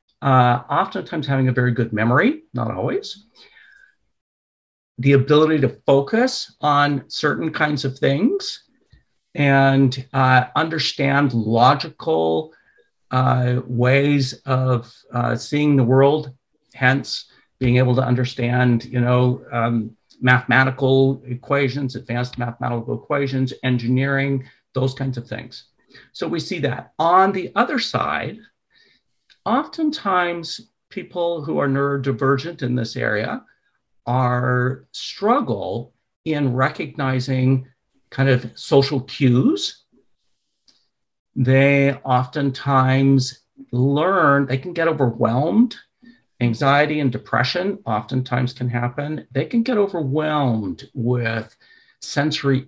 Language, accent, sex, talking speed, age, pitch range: English, American, male, 105 wpm, 50-69, 125-145 Hz